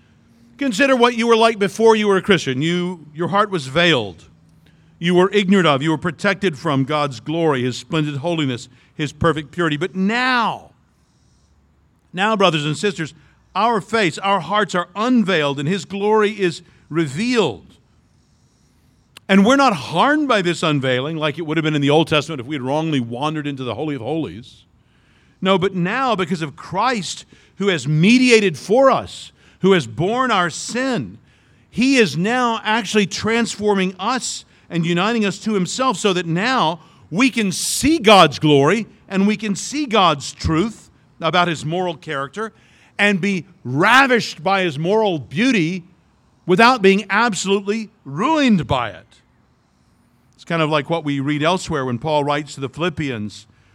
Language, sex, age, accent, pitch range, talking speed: English, male, 50-69, American, 150-205 Hz, 160 wpm